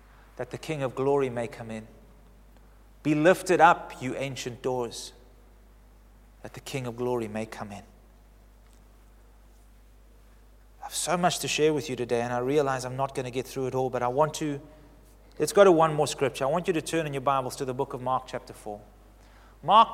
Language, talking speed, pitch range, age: English, 205 wpm, 120-160 Hz, 30-49